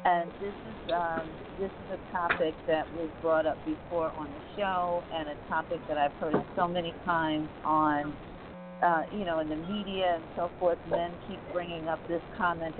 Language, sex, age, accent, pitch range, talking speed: English, female, 50-69, American, 155-185 Hz, 190 wpm